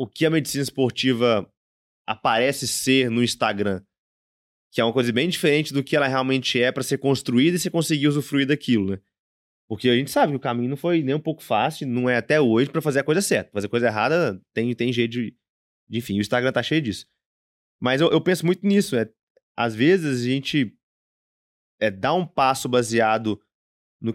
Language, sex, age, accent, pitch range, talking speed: Portuguese, male, 20-39, Brazilian, 125-165 Hz, 205 wpm